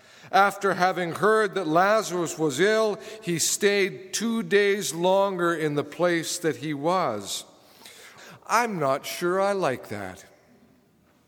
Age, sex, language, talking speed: 50-69, male, English, 130 wpm